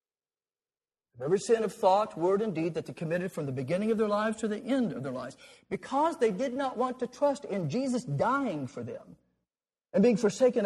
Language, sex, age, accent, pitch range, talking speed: English, male, 50-69, American, 155-255 Hz, 210 wpm